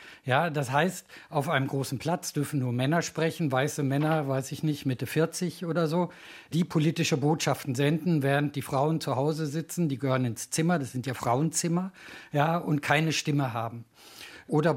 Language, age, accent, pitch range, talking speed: German, 50-69, German, 140-165 Hz, 170 wpm